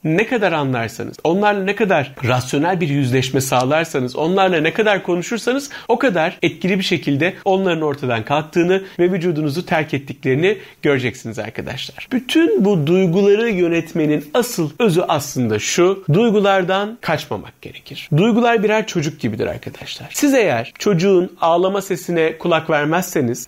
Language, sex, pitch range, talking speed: Turkish, male, 150-200 Hz, 130 wpm